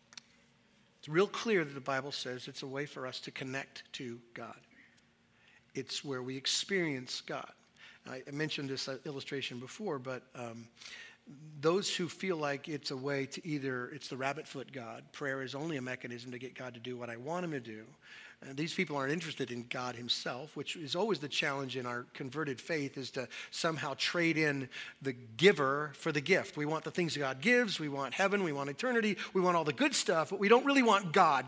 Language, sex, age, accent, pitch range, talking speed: English, male, 50-69, American, 140-225 Hz, 210 wpm